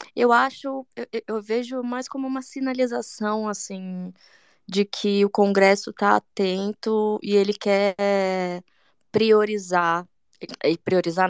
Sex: female